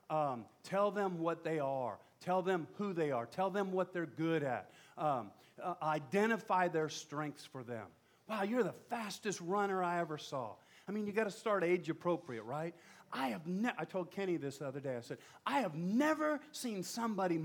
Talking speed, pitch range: 200 wpm, 145-200 Hz